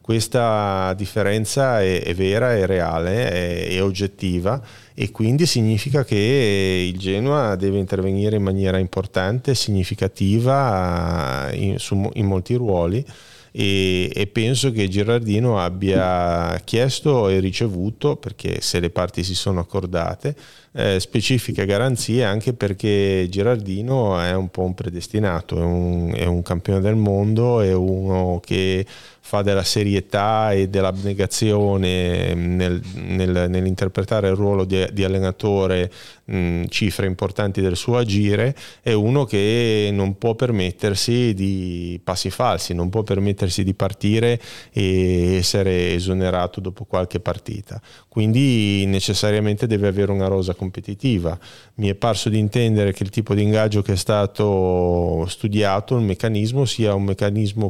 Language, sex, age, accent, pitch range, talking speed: Italian, male, 30-49, native, 95-115 Hz, 130 wpm